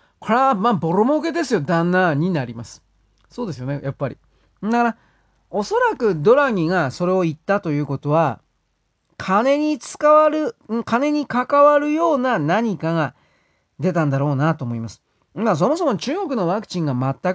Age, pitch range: 40-59, 150-235 Hz